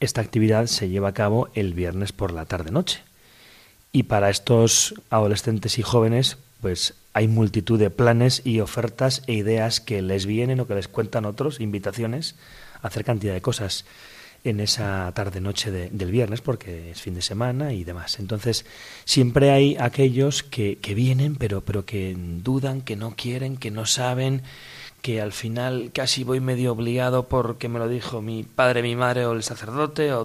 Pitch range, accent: 105-130 Hz, Spanish